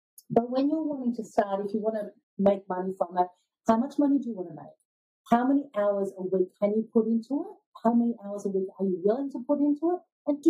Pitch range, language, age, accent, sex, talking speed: 195-250 Hz, English, 40-59, Australian, female, 255 wpm